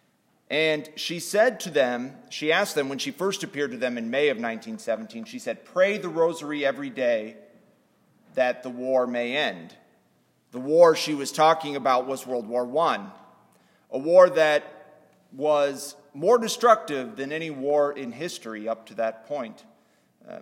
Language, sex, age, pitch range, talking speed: English, male, 30-49, 125-165 Hz, 165 wpm